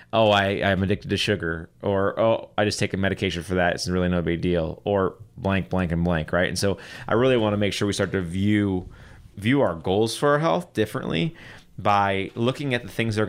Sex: male